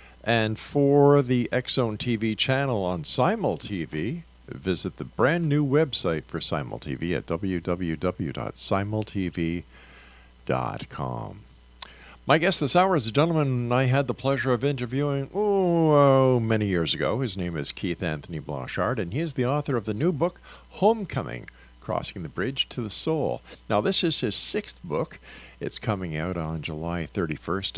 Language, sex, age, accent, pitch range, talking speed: English, male, 50-69, American, 95-140 Hz, 150 wpm